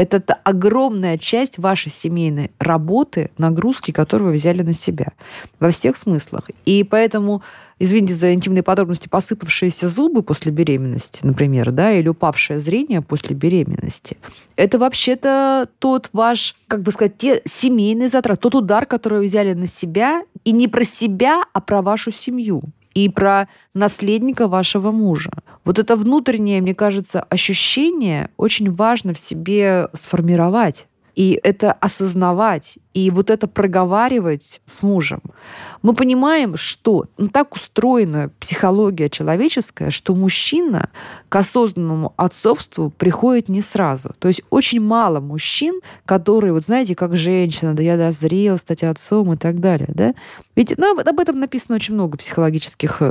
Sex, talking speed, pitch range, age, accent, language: female, 140 wpm, 170-225 Hz, 20-39, native, Russian